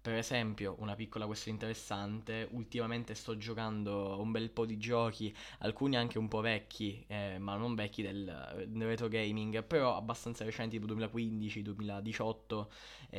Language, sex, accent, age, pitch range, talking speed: Italian, male, native, 10-29, 105-125 Hz, 145 wpm